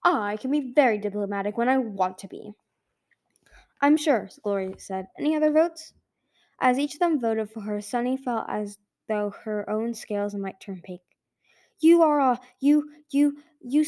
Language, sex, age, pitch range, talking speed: English, female, 10-29, 205-270 Hz, 180 wpm